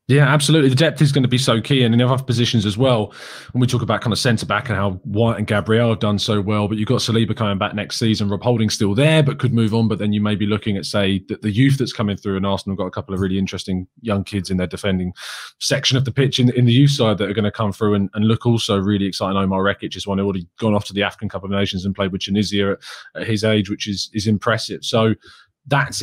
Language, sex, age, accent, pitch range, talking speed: English, male, 20-39, British, 105-125 Hz, 285 wpm